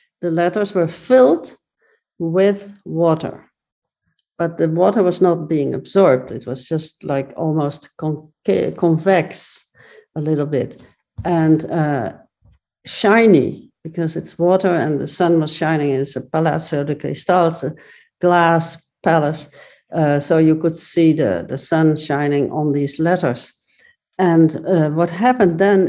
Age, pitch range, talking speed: 60-79, 155-185 Hz, 135 wpm